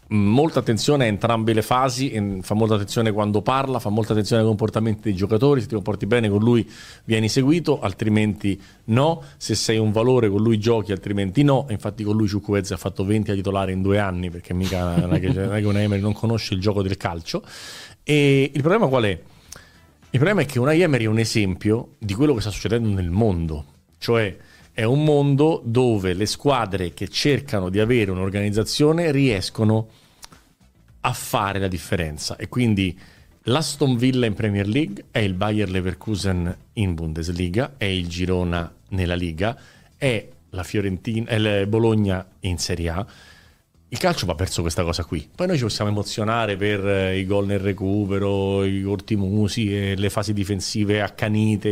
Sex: male